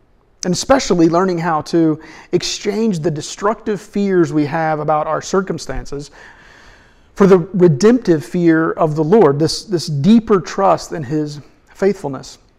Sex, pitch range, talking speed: male, 145-185 Hz, 135 wpm